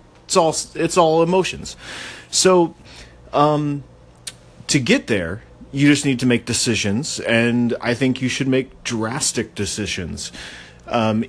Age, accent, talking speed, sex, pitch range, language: 30-49, American, 135 wpm, male, 105-140 Hz, English